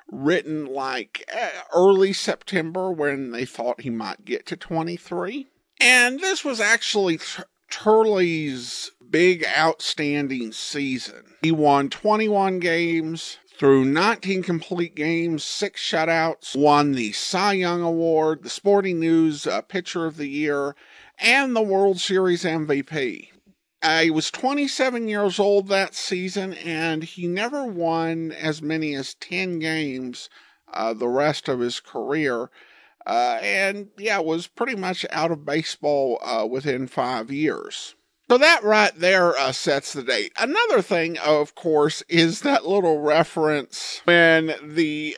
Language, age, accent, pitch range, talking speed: English, 50-69, American, 150-205 Hz, 135 wpm